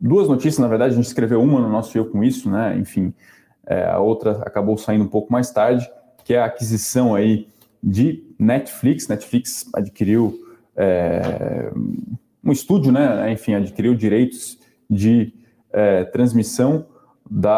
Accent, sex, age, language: Brazilian, male, 20-39, Portuguese